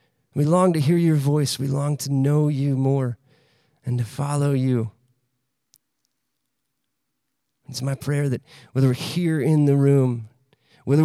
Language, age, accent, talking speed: English, 40-59, American, 145 wpm